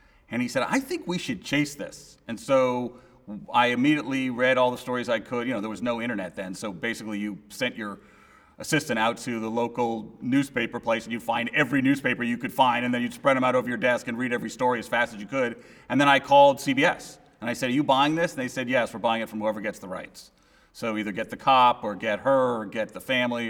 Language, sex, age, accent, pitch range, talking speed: English, male, 40-59, American, 120-145 Hz, 255 wpm